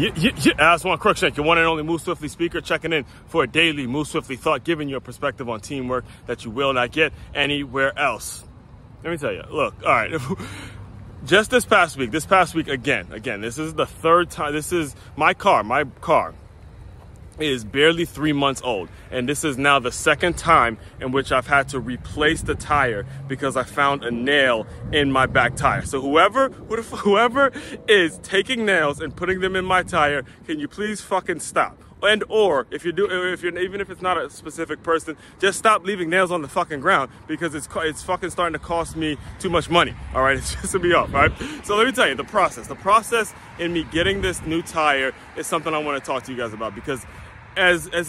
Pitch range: 125-170 Hz